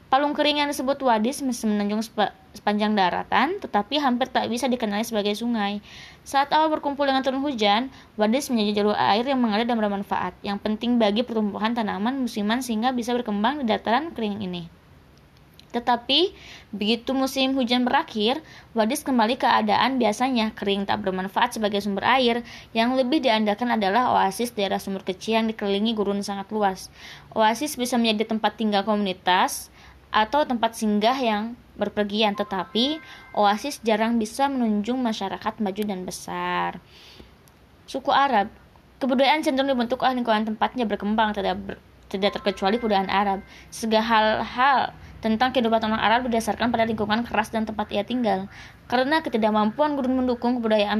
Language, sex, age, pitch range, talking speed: Indonesian, female, 20-39, 205-250 Hz, 145 wpm